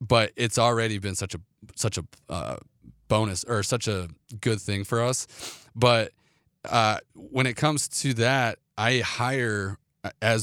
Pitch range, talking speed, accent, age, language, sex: 100-120 Hz, 155 wpm, American, 30-49, English, male